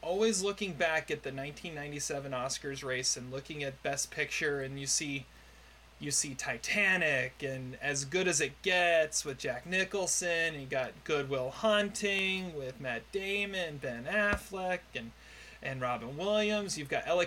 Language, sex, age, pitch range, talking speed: English, male, 30-49, 135-185 Hz, 155 wpm